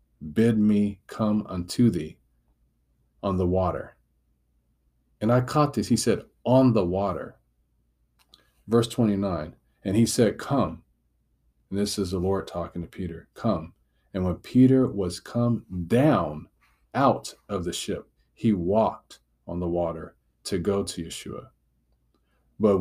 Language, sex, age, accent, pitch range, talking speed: English, male, 40-59, American, 65-105 Hz, 135 wpm